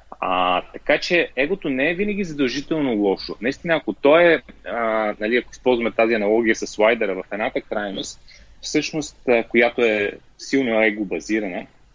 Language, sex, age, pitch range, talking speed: Bulgarian, male, 30-49, 105-130 Hz, 155 wpm